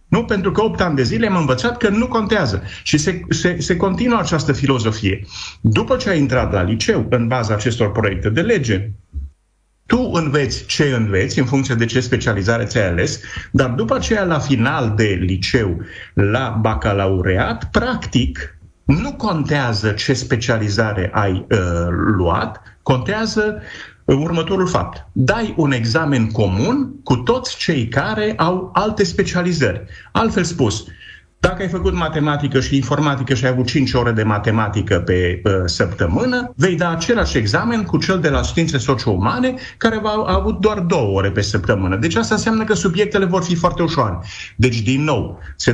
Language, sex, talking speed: Romanian, male, 165 wpm